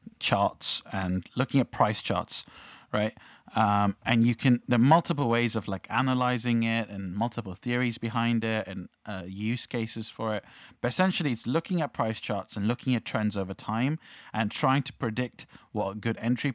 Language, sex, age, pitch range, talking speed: English, male, 30-49, 100-125 Hz, 185 wpm